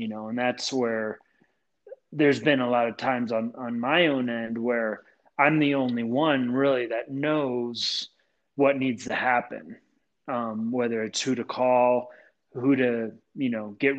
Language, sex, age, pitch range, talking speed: English, male, 30-49, 120-135 Hz, 165 wpm